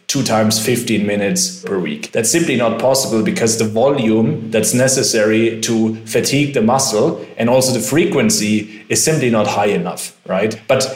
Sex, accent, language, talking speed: male, German, English, 165 wpm